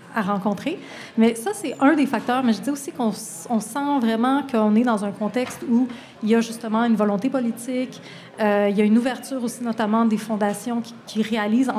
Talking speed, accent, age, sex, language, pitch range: 215 wpm, Canadian, 30-49, female, French, 200-230 Hz